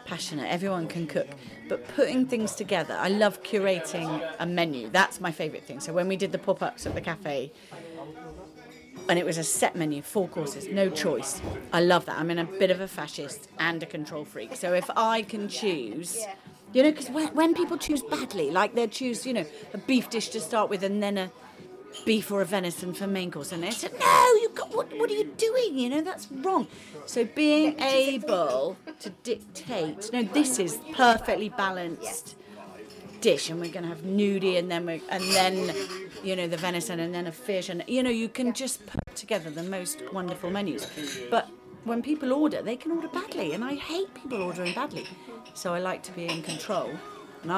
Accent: British